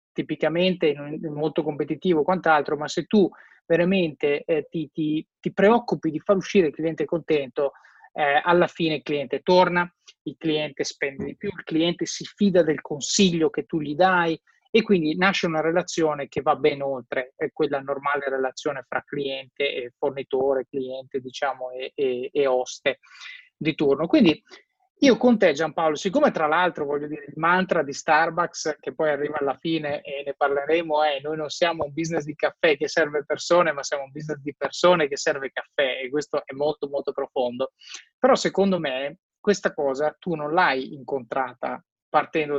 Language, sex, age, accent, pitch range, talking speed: Italian, male, 30-49, native, 145-180 Hz, 170 wpm